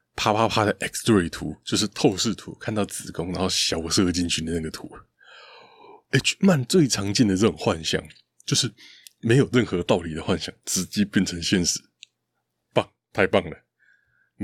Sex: male